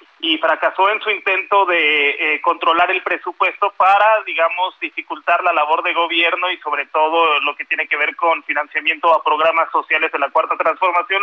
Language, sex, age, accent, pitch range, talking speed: Spanish, male, 40-59, Mexican, 160-200 Hz, 180 wpm